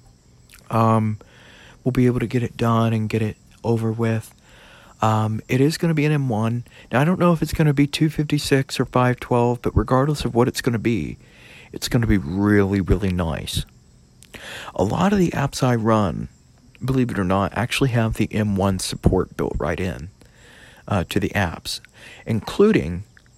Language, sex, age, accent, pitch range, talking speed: English, male, 40-59, American, 100-125 Hz, 185 wpm